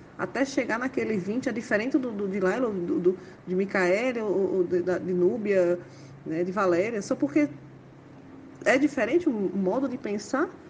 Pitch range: 200-285 Hz